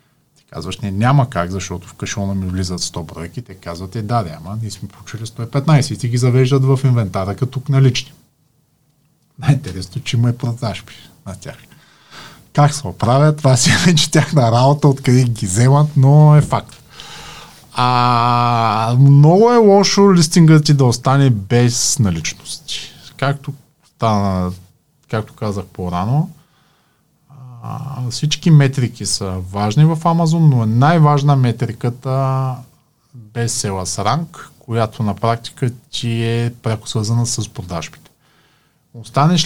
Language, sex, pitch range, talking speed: Bulgarian, male, 110-145 Hz, 140 wpm